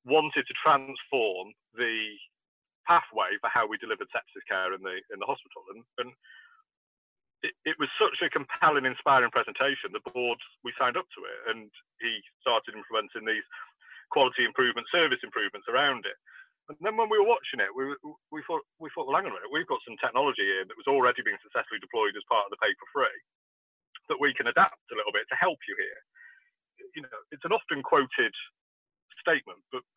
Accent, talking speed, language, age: British, 195 wpm, English, 40-59